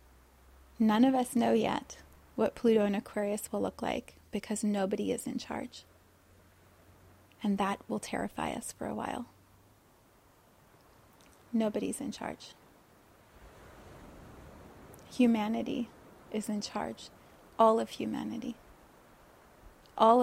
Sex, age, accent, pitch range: female, 30-49, American, 205-245 Hz